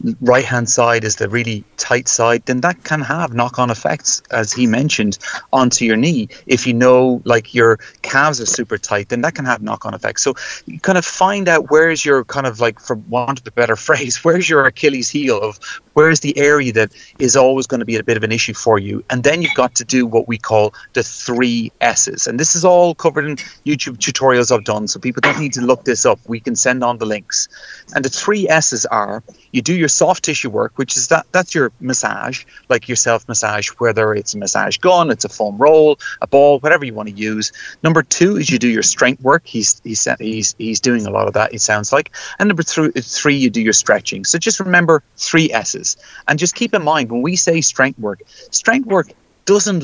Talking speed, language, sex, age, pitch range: 230 wpm, English, male, 30-49, 115-160 Hz